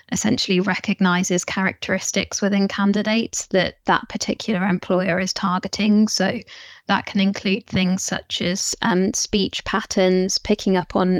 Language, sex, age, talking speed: English, female, 20-39, 130 wpm